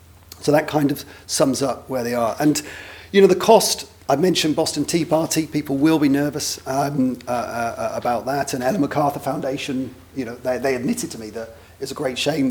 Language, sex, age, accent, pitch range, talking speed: English, male, 40-59, British, 120-155 Hz, 210 wpm